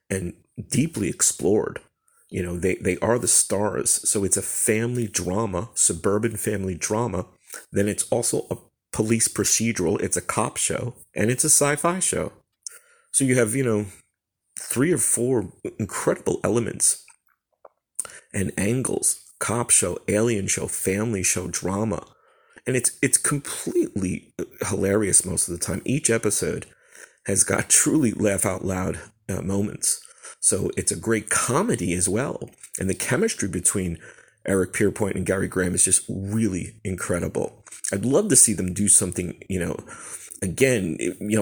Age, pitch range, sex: 30-49, 95-115 Hz, male